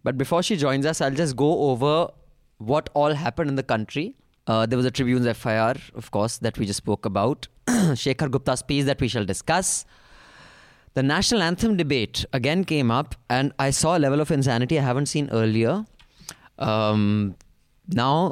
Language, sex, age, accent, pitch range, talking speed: English, male, 20-39, Indian, 115-160 Hz, 180 wpm